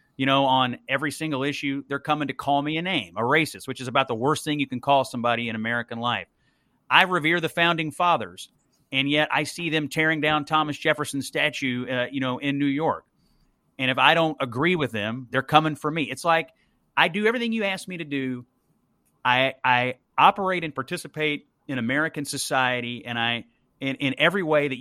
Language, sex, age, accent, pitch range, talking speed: English, male, 30-49, American, 125-155 Hz, 205 wpm